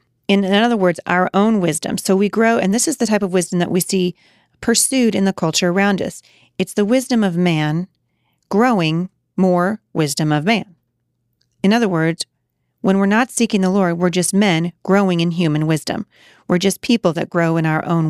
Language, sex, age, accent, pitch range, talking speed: English, female, 40-59, American, 160-205 Hz, 200 wpm